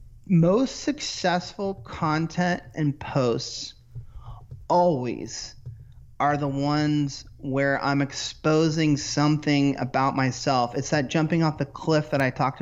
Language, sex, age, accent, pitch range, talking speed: English, male, 30-49, American, 135-160 Hz, 115 wpm